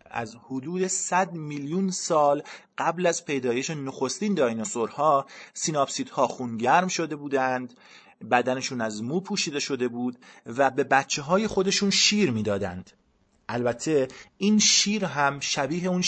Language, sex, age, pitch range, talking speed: Persian, male, 30-49, 125-165 Hz, 125 wpm